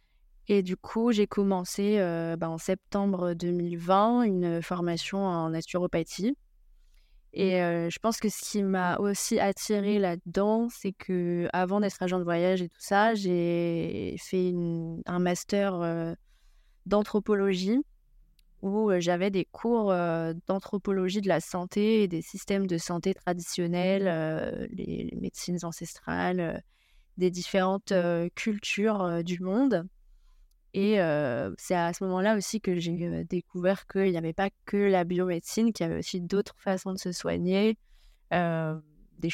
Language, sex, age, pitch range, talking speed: French, female, 20-39, 170-200 Hz, 155 wpm